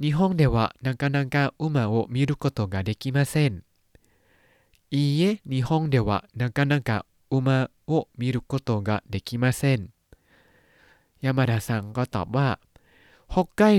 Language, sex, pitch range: Thai, male, 110-145 Hz